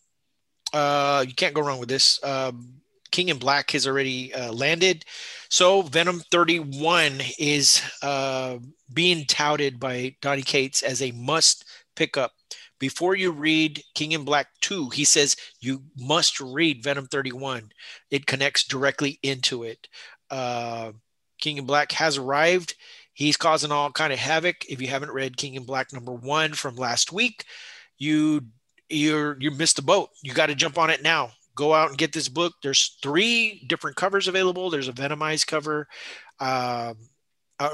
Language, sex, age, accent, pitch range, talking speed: English, male, 30-49, American, 135-160 Hz, 165 wpm